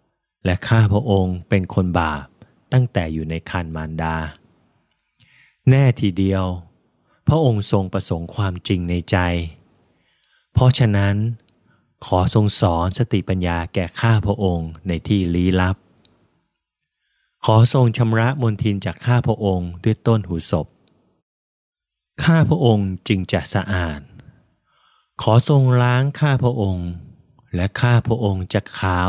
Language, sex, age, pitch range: Thai, male, 20-39, 90-115 Hz